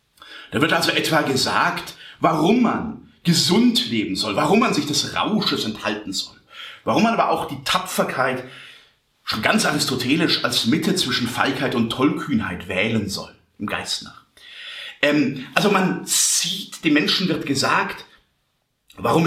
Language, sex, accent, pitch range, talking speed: German, male, German, 140-220 Hz, 145 wpm